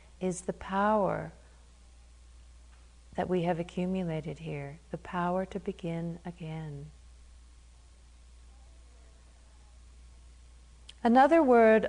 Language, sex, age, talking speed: English, female, 50-69, 75 wpm